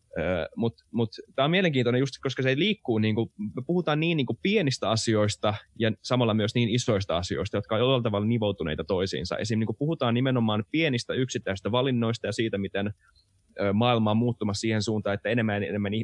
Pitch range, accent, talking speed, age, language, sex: 100-120 Hz, native, 180 wpm, 20-39, Finnish, male